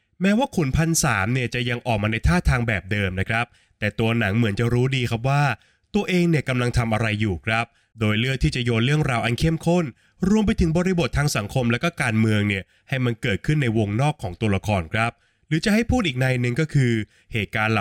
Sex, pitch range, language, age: male, 110-165 Hz, Thai, 20-39